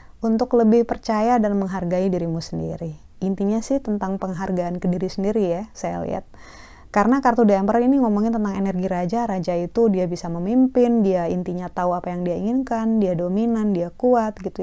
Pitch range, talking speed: 175-220 Hz, 170 wpm